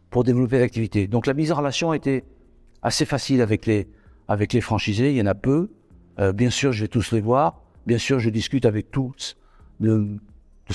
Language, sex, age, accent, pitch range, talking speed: French, male, 60-79, French, 100-130 Hz, 210 wpm